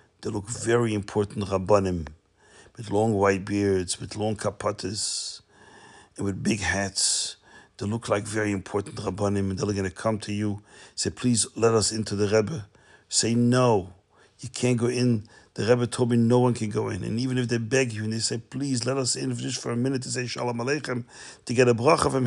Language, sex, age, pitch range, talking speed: English, male, 60-79, 100-120 Hz, 205 wpm